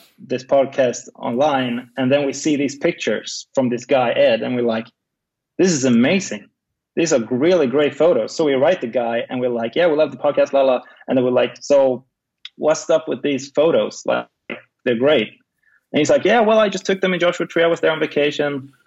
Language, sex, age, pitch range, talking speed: English, male, 20-39, 120-145 Hz, 220 wpm